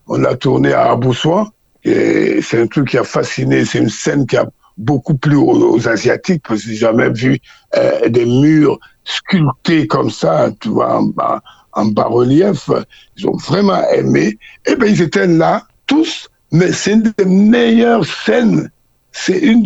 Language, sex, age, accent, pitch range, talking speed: French, male, 60-79, French, 150-215 Hz, 165 wpm